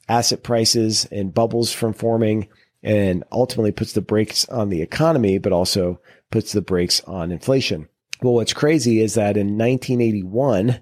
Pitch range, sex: 105-125 Hz, male